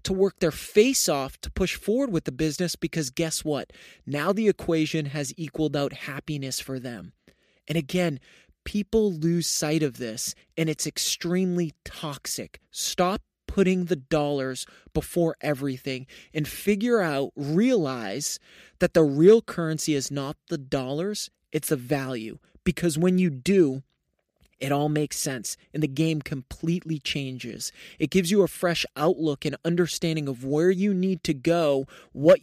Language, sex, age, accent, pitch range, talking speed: English, male, 20-39, American, 145-175 Hz, 155 wpm